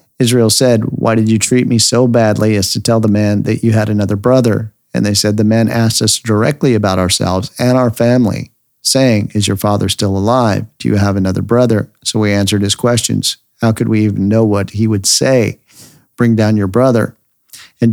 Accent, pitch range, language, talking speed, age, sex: American, 105-120 Hz, English, 210 wpm, 50-69, male